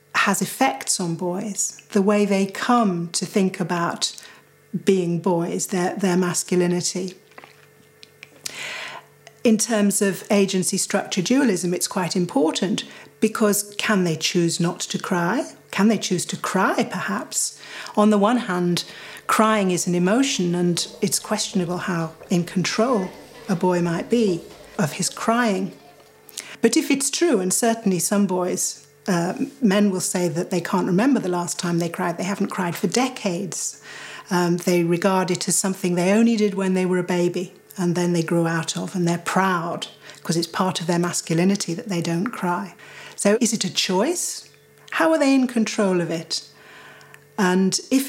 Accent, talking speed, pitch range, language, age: British, 165 wpm, 175-210 Hz, English, 40-59